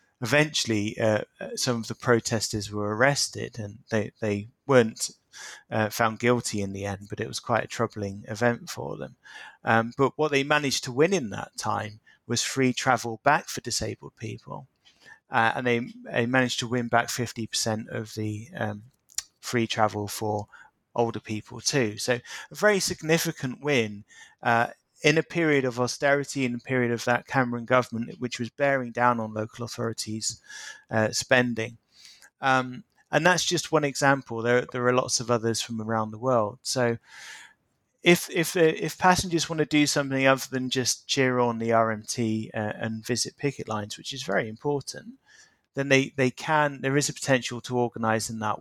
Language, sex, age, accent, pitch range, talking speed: English, male, 30-49, British, 110-135 Hz, 175 wpm